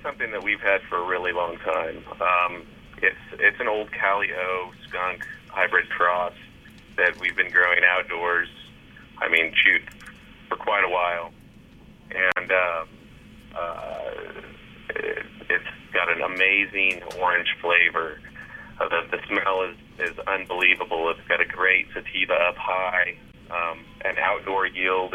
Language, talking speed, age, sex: English, 140 wpm, 30-49, male